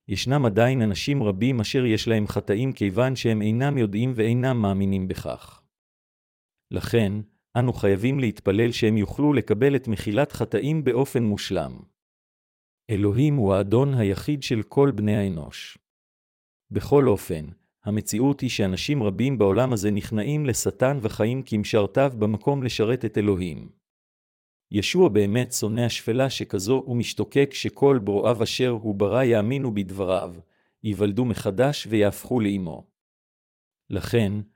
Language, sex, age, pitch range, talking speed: Hebrew, male, 50-69, 105-130 Hz, 120 wpm